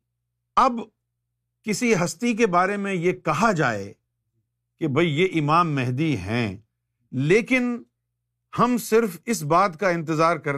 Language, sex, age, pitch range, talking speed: Urdu, male, 50-69, 120-170 Hz, 130 wpm